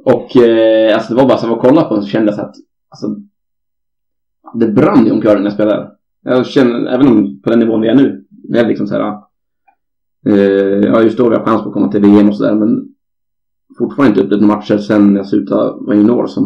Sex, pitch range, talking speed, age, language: male, 105-135 Hz, 225 wpm, 20-39, Swedish